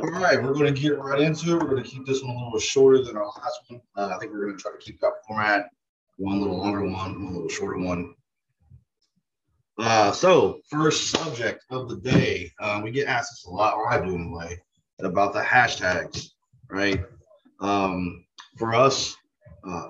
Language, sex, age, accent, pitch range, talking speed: English, male, 30-49, American, 95-125 Hz, 200 wpm